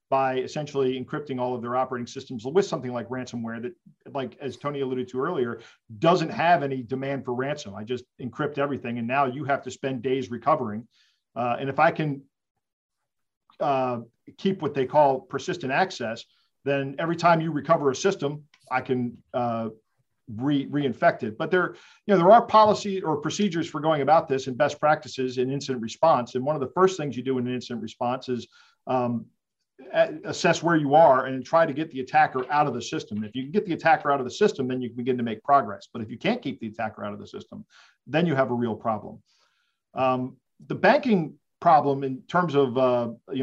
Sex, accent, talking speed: male, American, 210 wpm